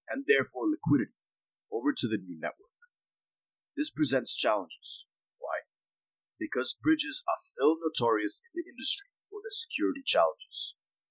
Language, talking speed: English, 130 wpm